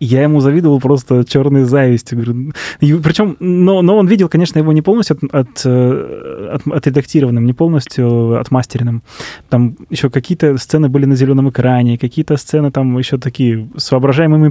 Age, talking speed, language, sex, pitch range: 20-39, 155 wpm, Russian, male, 125-160 Hz